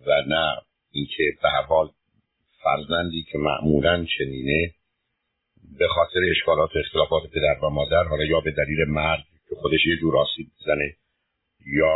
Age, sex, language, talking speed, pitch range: 60-79, male, Persian, 140 wpm, 80-100 Hz